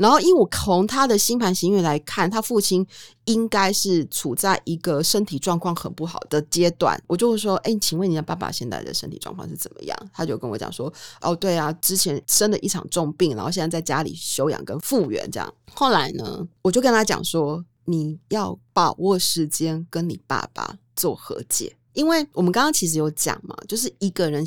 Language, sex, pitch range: Chinese, female, 160-210 Hz